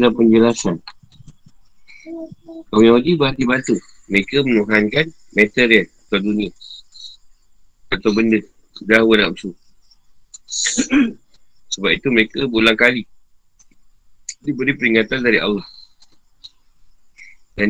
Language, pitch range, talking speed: Malay, 100-120 Hz, 85 wpm